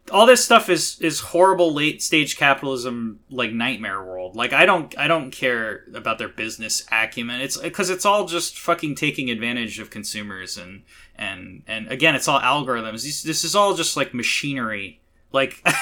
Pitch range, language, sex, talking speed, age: 115-165 Hz, English, male, 180 wpm, 20-39